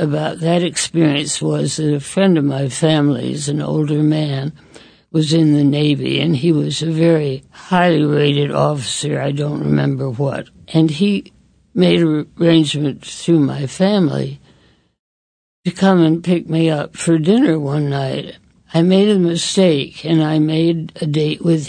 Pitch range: 145-170 Hz